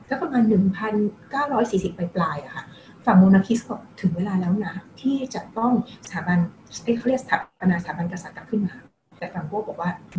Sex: female